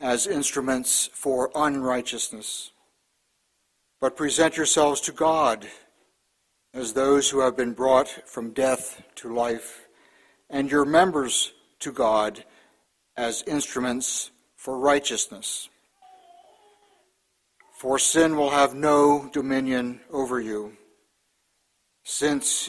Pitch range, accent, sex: 130-170 Hz, American, male